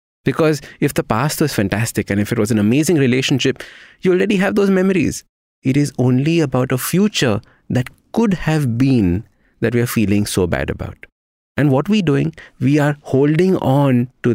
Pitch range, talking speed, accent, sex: 100-145 Hz, 185 wpm, Indian, male